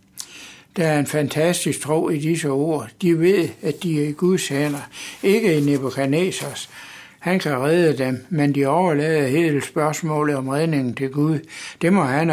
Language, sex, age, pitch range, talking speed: Danish, male, 60-79, 145-165 Hz, 170 wpm